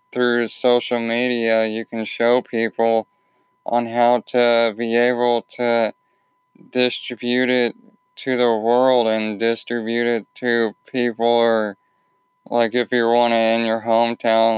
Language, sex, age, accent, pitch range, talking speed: English, male, 20-39, American, 110-125 Hz, 125 wpm